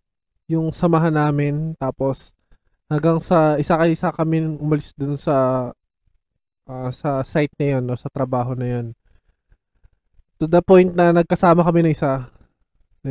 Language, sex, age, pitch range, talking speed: Filipino, male, 20-39, 135-170 Hz, 145 wpm